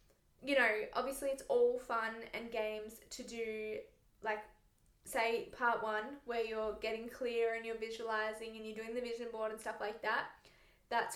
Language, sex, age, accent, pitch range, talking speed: English, female, 10-29, Australian, 225-270 Hz, 170 wpm